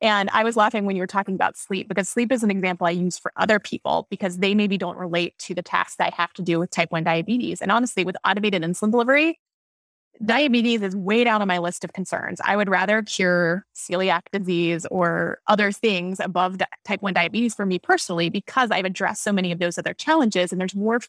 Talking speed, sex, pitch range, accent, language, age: 225 wpm, female, 180-215 Hz, American, English, 20-39